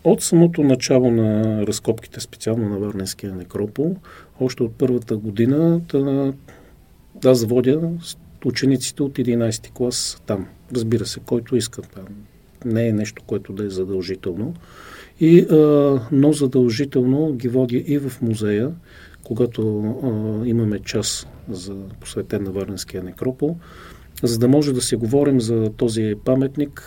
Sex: male